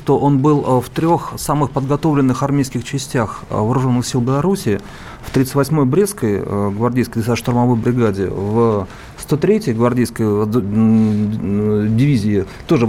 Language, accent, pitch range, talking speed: Russian, native, 115-140 Hz, 125 wpm